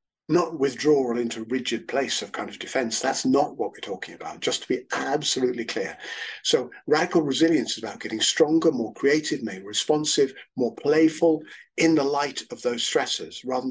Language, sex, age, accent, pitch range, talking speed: English, male, 50-69, British, 120-160 Hz, 185 wpm